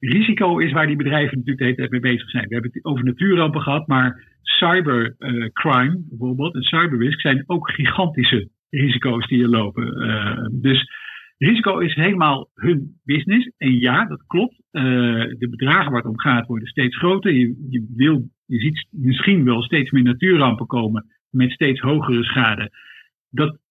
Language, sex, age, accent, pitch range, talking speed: Dutch, male, 50-69, Dutch, 125-160 Hz, 170 wpm